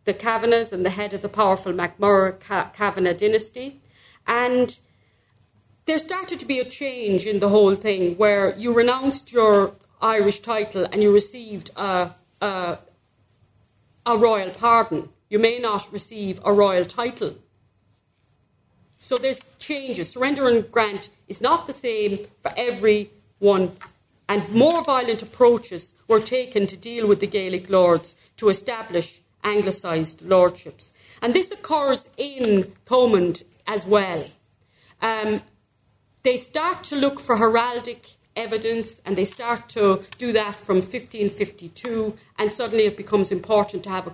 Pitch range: 190-235 Hz